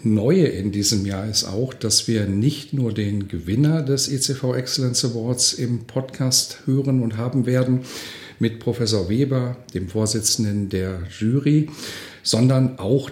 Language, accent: German, German